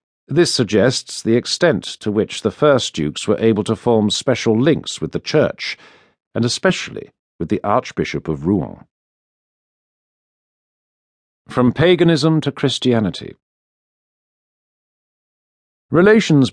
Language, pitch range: English, 105-150 Hz